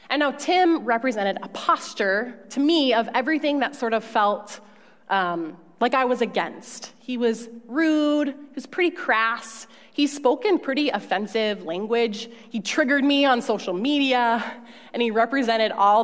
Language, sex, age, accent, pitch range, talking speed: English, female, 20-39, American, 195-255 Hz, 155 wpm